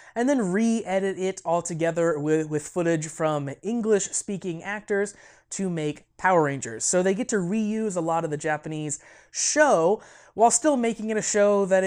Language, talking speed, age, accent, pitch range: English, 170 wpm, 20-39, American, 160-210 Hz